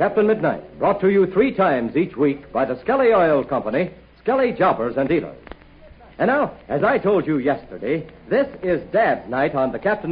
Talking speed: 190 wpm